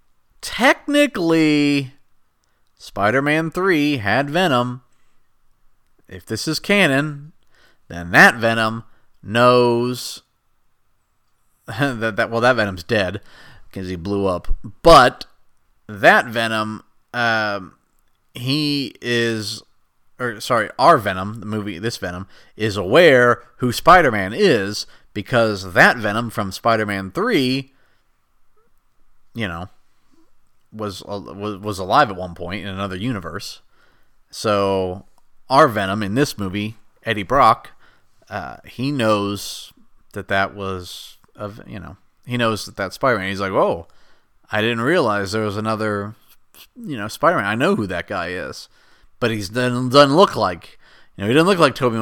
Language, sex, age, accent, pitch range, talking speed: English, male, 30-49, American, 100-130 Hz, 135 wpm